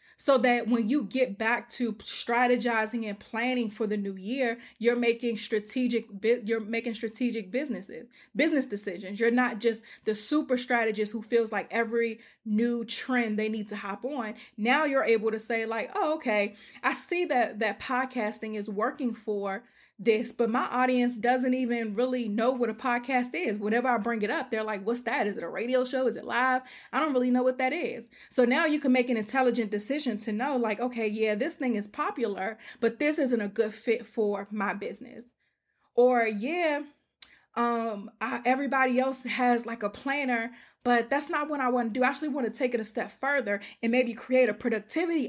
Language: English